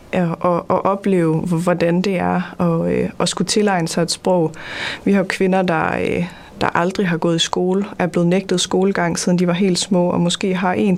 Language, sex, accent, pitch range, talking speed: Danish, female, native, 175-195 Hz, 220 wpm